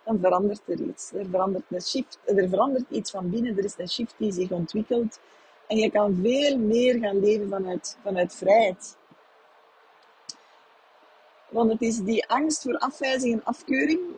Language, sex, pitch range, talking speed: Dutch, female, 200-245 Hz, 165 wpm